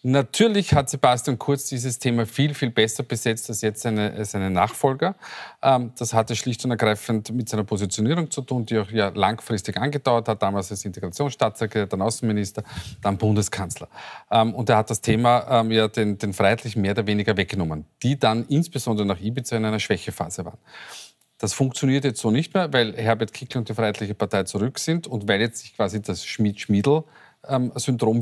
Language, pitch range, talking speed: German, 105-130 Hz, 180 wpm